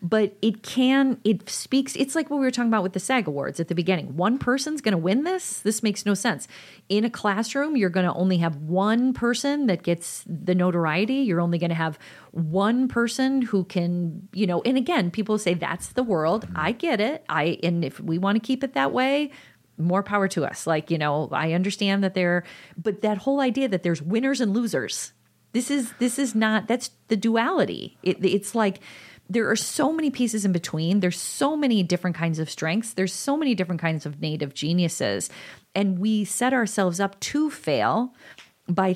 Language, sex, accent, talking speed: English, female, American, 210 wpm